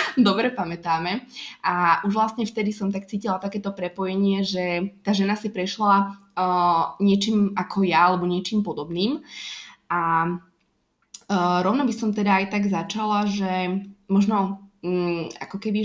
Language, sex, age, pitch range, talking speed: Slovak, female, 20-39, 180-210 Hz, 130 wpm